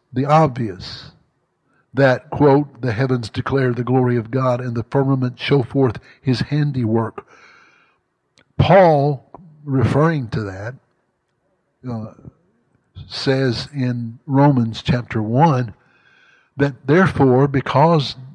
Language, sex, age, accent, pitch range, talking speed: English, male, 60-79, American, 125-150 Hz, 100 wpm